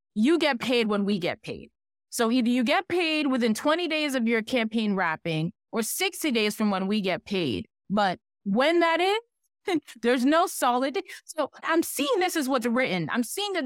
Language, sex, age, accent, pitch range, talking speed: English, female, 30-49, American, 190-265 Hz, 200 wpm